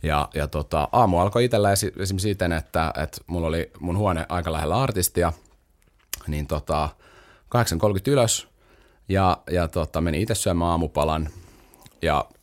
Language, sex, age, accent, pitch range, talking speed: Finnish, male, 30-49, native, 75-95 Hz, 140 wpm